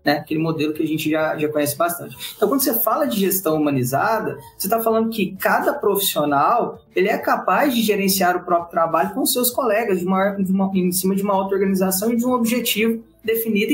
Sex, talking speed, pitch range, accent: male, 210 wpm, 170-220 Hz, Brazilian